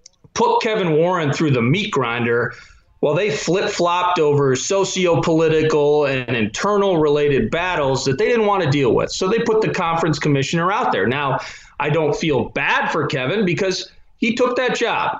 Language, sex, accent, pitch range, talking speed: English, male, American, 140-180 Hz, 170 wpm